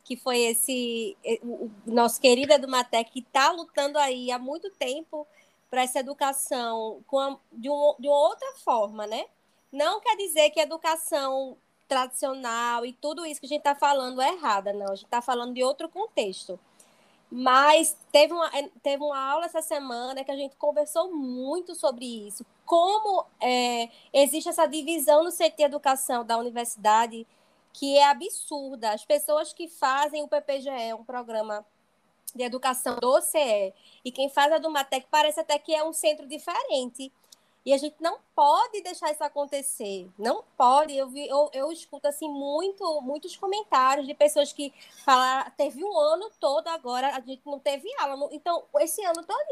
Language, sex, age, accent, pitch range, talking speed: Portuguese, female, 20-39, Brazilian, 255-310 Hz, 170 wpm